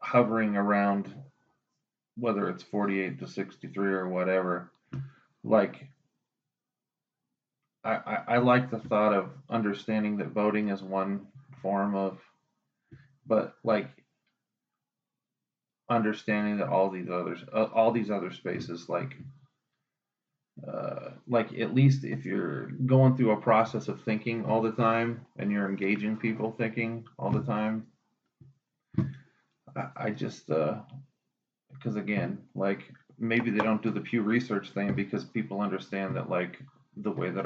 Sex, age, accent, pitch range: male, 30-49, American, 100-125 Hz